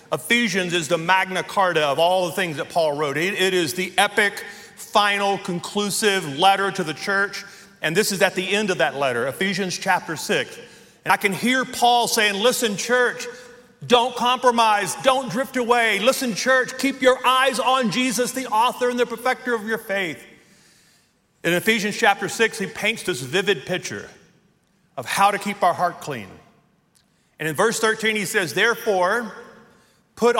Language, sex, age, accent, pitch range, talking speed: English, male, 40-59, American, 180-235 Hz, 170 wpm